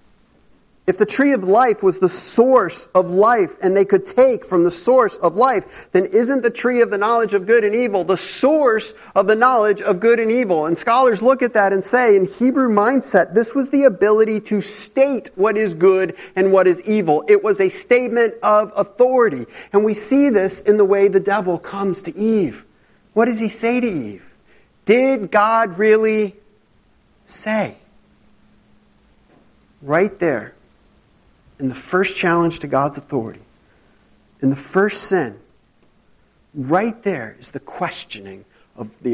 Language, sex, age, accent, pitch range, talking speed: English, male, 40-59, American, 165-235 Hz, 170 wpm